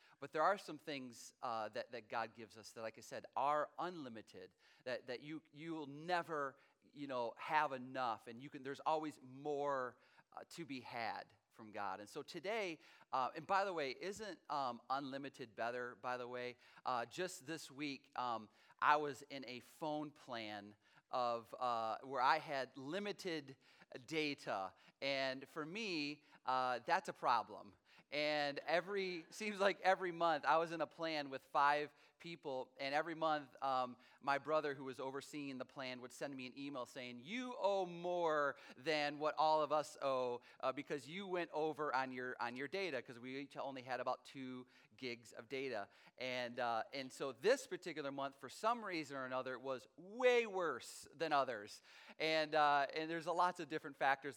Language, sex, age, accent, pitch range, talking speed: English, male, 40-59, American, 130-155 Hz, 180 wpm